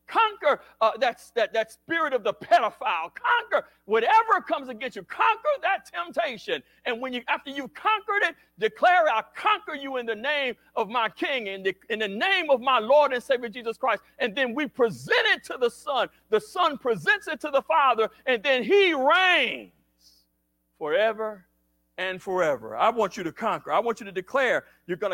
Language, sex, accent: English, male, American